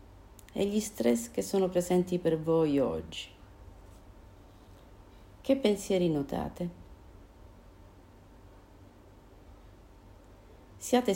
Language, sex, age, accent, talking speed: Italian, female, 50-69, native, 70 wpm